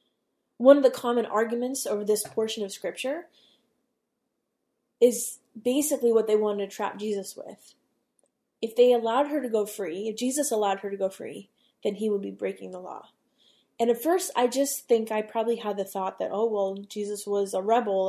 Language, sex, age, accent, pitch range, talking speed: English, female, 20-39, American, 205-255 Hz, 190 wpm